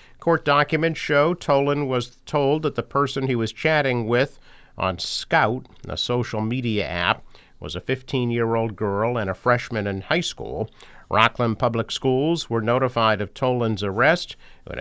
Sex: male